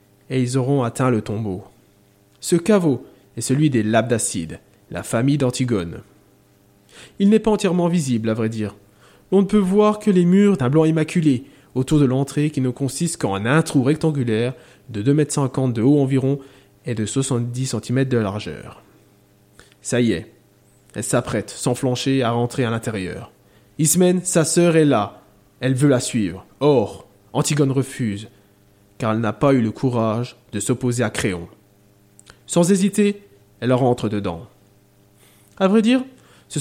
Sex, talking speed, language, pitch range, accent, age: male, 160 wpm, French, 105-150 Hz, French, 20-39